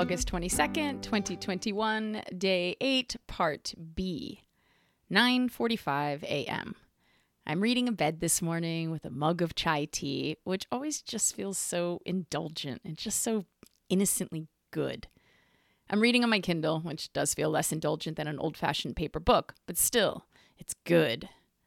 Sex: female